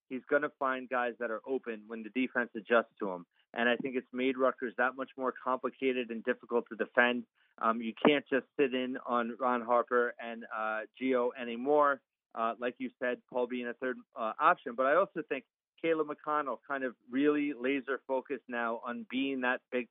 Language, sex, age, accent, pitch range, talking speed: English, male, 40-59, American, 120-135 Hz, 200 wpm